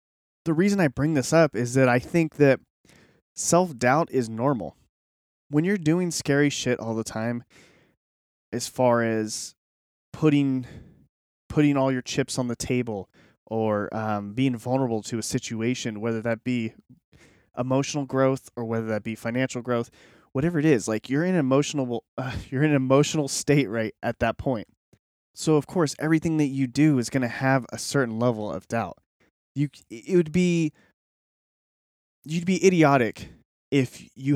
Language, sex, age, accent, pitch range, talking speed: English, male, 20-39, American, 115-145 Hz, 165 wpm